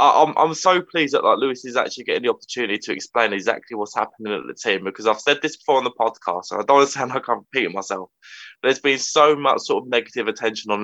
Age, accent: 20-39, British